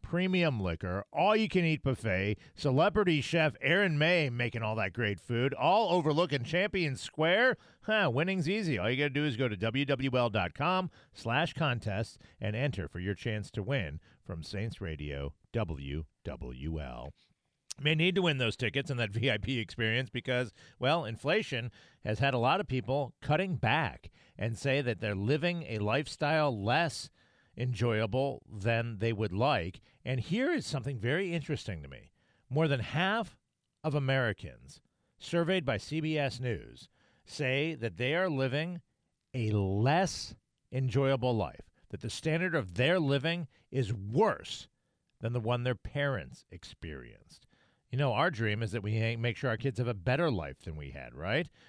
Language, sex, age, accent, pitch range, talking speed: English, male, 40-59, American, 110-150 Hz, 155 wpm